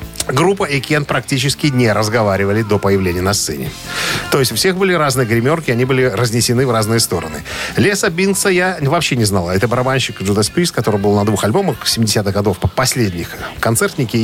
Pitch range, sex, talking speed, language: 110-145 Hz, male, 175 wpm, Russian